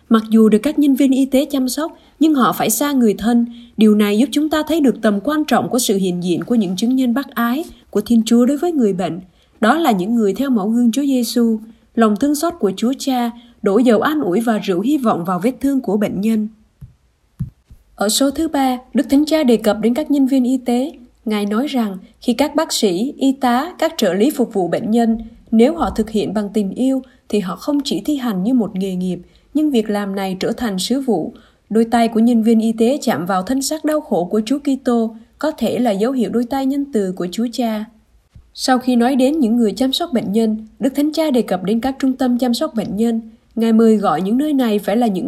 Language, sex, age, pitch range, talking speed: Vietnamese, female, 20-39, 215-265 Hz, 250 wpm